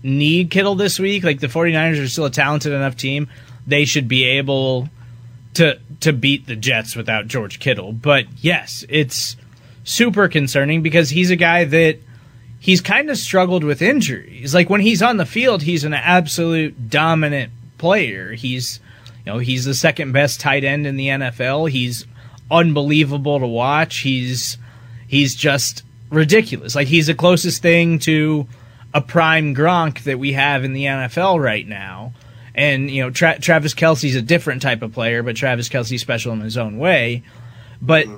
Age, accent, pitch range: 30-49, American, 120-160 Hz